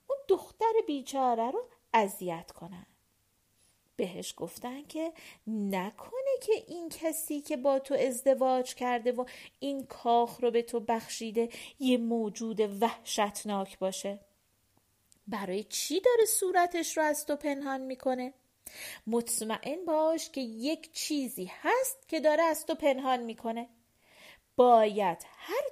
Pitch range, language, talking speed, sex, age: 215-310 Hz, Persian, 120 wpm, female, 40-59